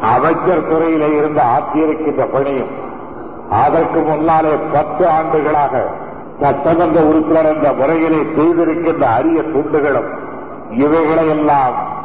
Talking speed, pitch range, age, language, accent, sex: 85 wpm, 150-165 Hz, 50-69, Tamil, native, male